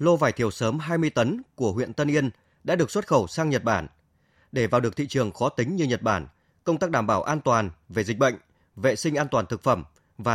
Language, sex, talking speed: Vietnamese, male, 250 wpm